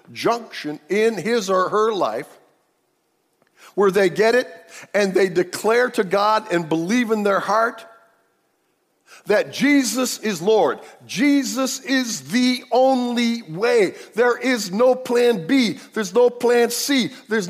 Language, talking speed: English, 135 wpm